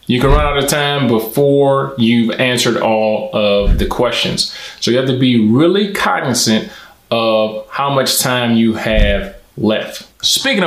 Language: English